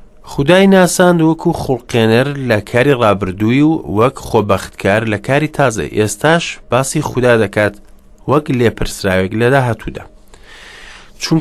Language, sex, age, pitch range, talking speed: English, male, 30-49, 100-130 Hz, 110 wpm